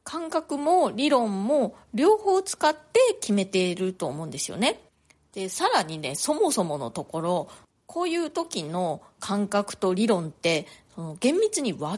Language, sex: Japanese, female